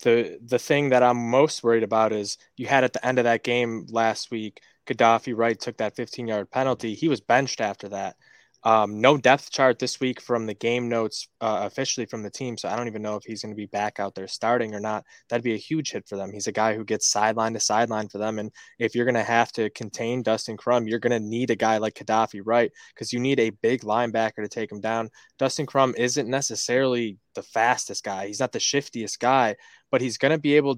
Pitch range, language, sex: 110-125 Hz, English, male